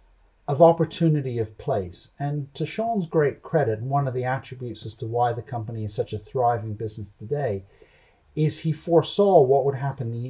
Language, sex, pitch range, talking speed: English, male, 110-155 Hz, 175 wpm